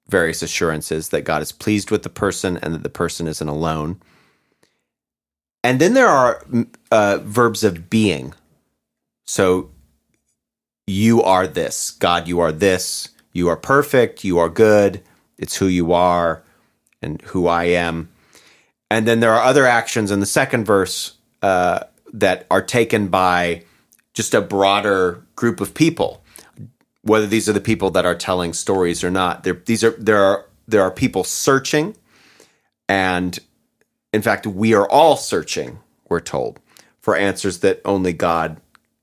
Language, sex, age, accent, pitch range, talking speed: English, male, 30-49, American, 85-110 Hz, 155 wpm